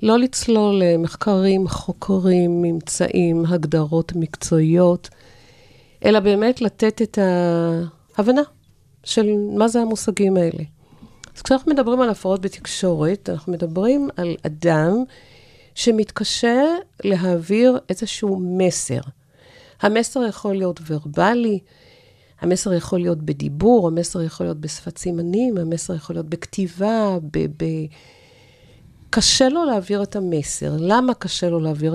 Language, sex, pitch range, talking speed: Hebrew, female, 155-215 Hz, 110 wpm